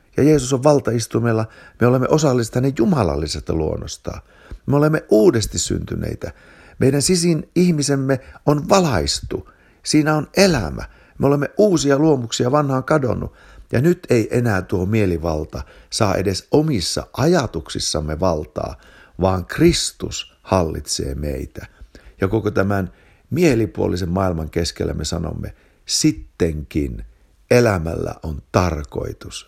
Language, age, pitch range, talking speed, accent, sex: Finnish, 60-79, 80-120 Hz, 110 wpm, native, male